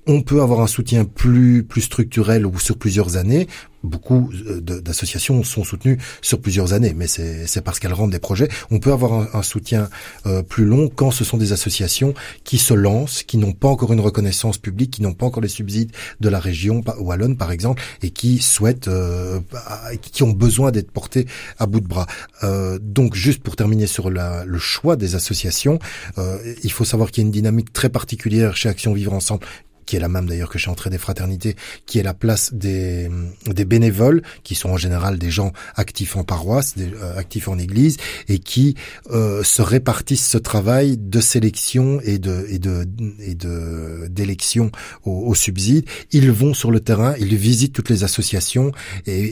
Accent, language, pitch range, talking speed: French, French, 95-120 Hz, 195 wpm